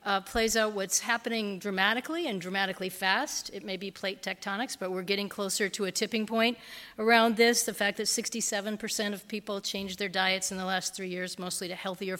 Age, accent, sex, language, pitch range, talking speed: 40-59, American, female, English, 190-225 Hz, 200 wpm